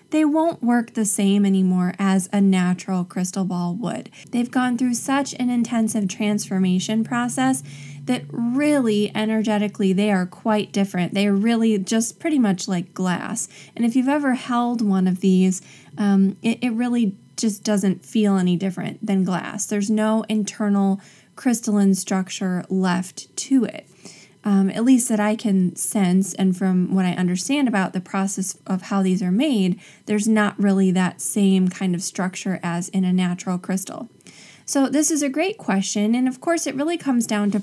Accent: American